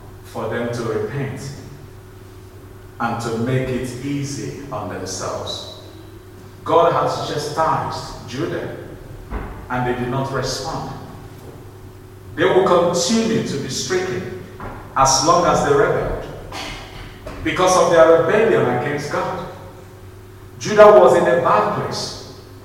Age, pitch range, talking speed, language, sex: 50-69, 100-165 Hz, 115 wpm, English, male